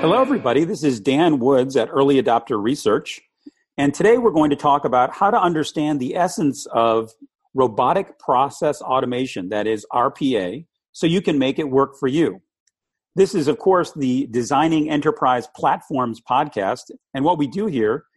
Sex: male